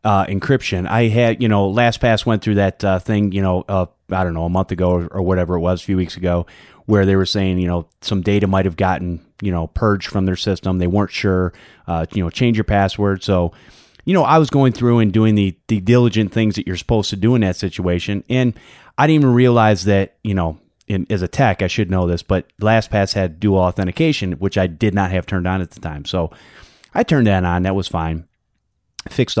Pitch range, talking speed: 95-120 Hz, 240 wpm